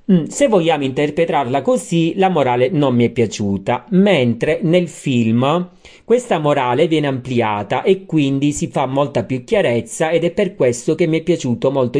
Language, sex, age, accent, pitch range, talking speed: Italian, male, 40-59, native, 120-165 Hz, 165 wpm